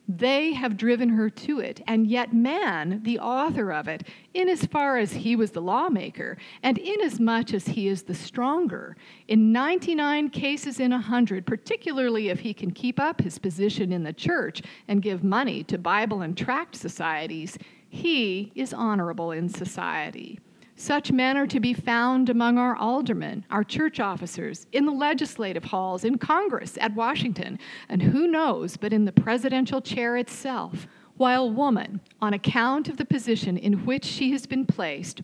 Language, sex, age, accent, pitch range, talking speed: English, female, 50-69, American, 200-265 Hz, 170 wpm